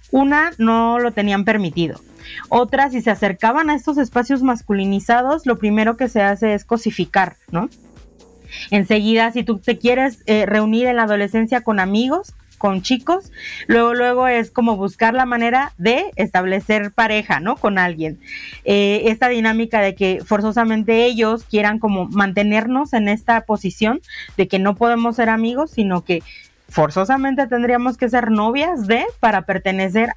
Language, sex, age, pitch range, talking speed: Spanish, female, 30-49, 205-245 Hz, 155 wpm